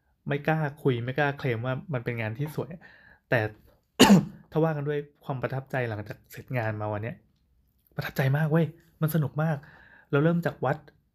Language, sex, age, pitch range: Thai, male, 20-39, 125-155 Hz